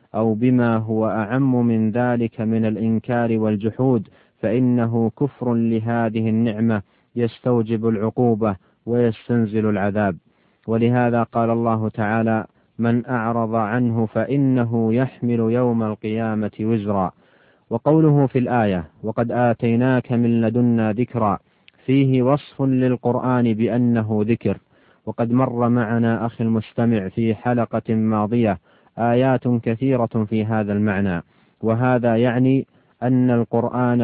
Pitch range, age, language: 110-120 Hz, 40-59, Arabic